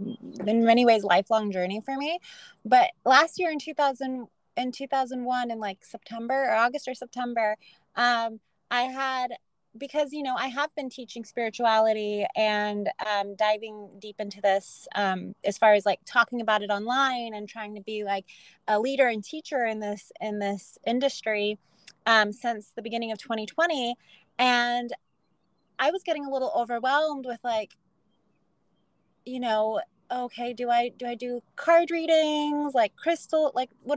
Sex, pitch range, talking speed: female, 210-260 Hz, 160 wpm